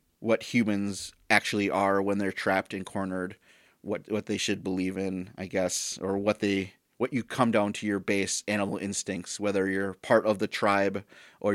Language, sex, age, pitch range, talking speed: English, male, 30-49, 100-115 Hz, 185 wpm